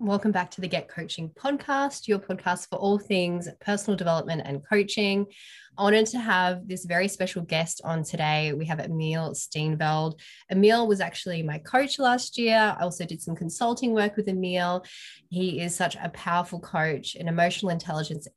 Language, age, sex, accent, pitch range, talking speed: English, 20-39, female, Australian, 165-210 Hz, 175 wpm